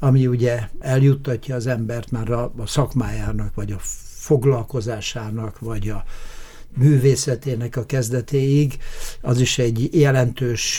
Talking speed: 110 wpm